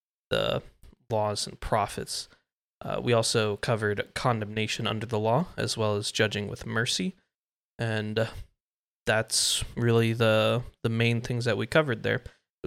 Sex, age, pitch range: male, 20-39, 110-120 Hz